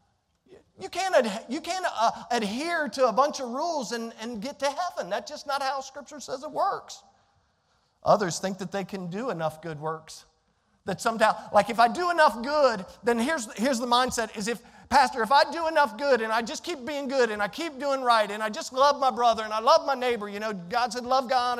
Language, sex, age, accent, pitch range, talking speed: English, male, 40-59, American, 215-285 Hz, 230 wpm